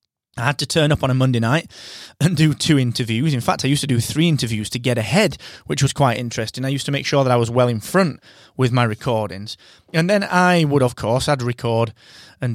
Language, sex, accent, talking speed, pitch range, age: English, male, British, 245 wpm, 115-160 Hz, 30-49